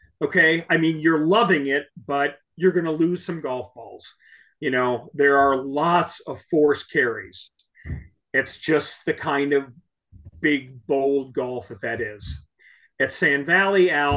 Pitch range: 140-175 Hz